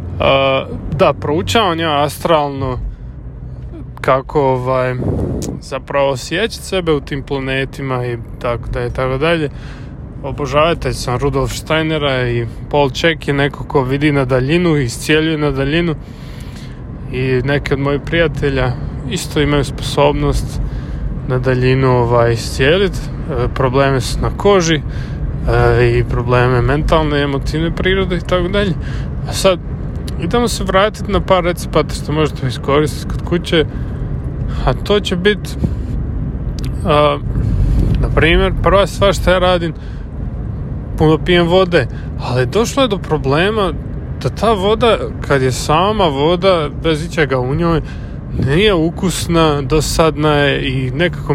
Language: Croatian